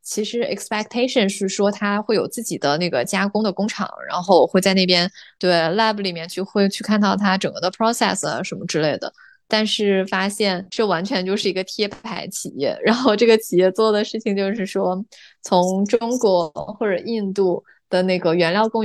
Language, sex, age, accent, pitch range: Chinese, female, 20-39, native, 185-215 Hz